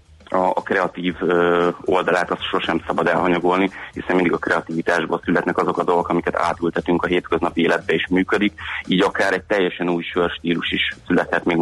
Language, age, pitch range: Hungarian, 30-49, 85-95 Hz